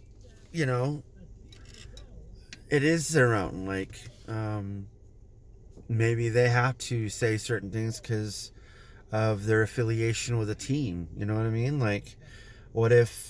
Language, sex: English, male